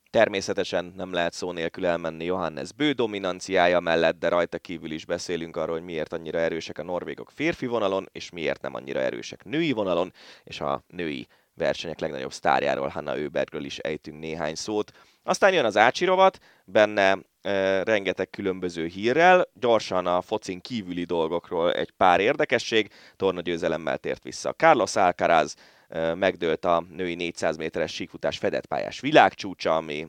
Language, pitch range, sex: Hungarian, 85-100 Hz, male